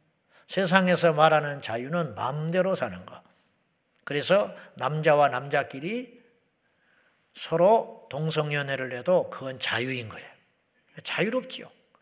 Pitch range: 135-185 Hz